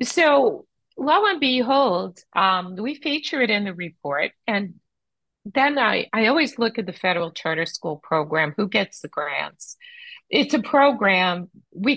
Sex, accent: female, American